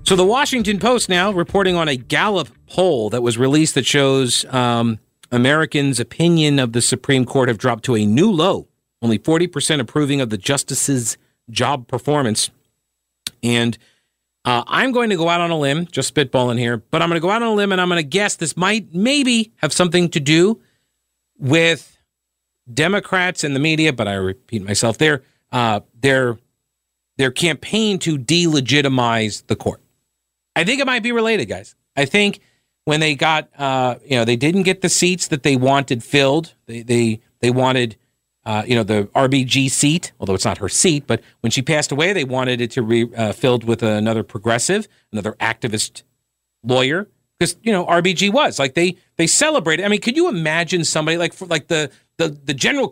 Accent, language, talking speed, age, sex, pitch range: American, English, 190 wpm, 40-59, male, 120-170 Hz